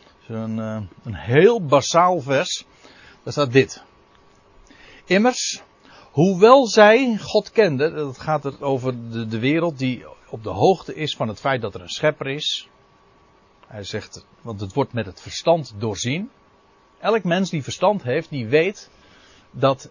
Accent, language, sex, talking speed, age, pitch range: Dutch, Dutch, male, 150 wpm, 60-79, 125-170 Hz